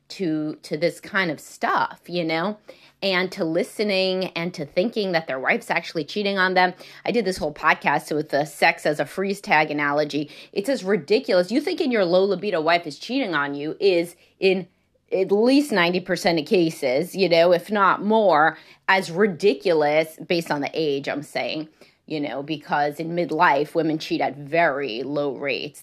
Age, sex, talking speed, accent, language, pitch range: 30-49, female, 180 wpm, American, English, 155-190 Hz